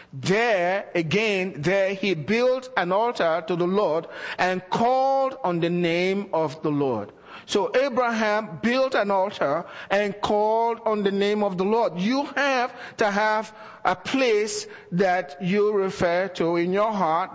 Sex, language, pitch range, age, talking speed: male, English, 175-220 Hz, 50-69, 150 wpm